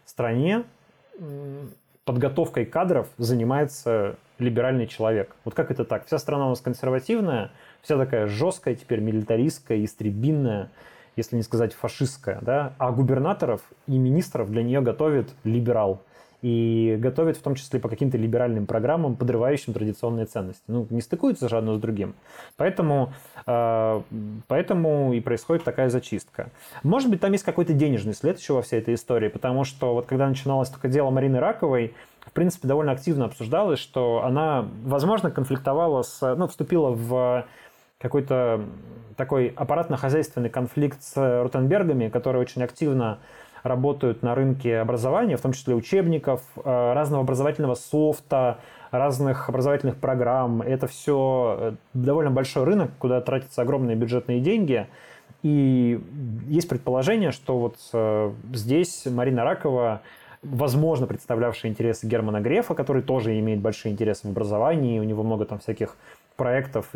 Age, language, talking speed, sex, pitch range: 20-39, Russian, 135 wpm, male, 115-140 Hz